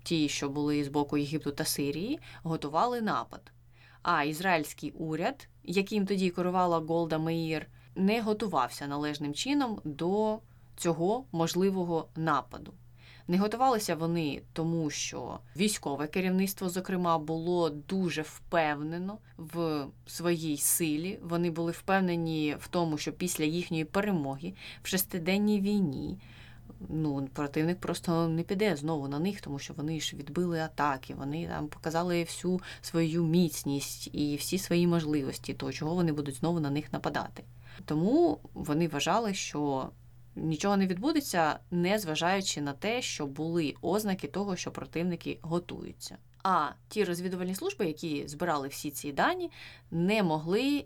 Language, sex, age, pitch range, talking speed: Ukrainian, female, 20-39, 150-185 Hz, 135 wpm